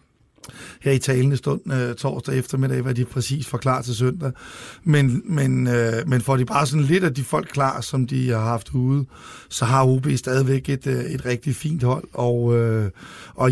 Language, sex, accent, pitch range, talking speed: Danish, male, native, 125-150 Hz, 180 wpm